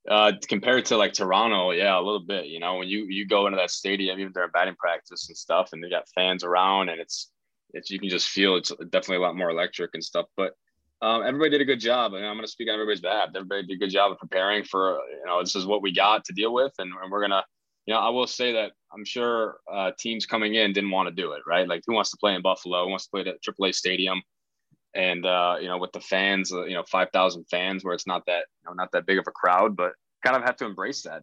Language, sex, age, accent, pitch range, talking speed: English, male, 20-39, American, 90-105 Hz, 280 wpm